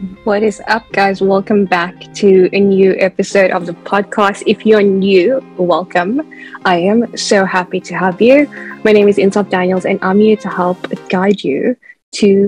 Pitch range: 185-215 Hz